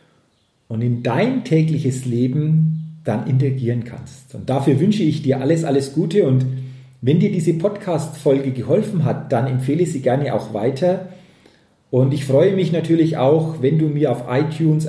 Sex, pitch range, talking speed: male, 120-160 Hz, 165 wpm